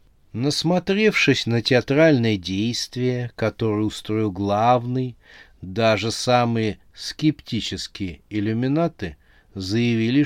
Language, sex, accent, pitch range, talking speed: Russian, male, native, 100-130 Hz, 70 wpm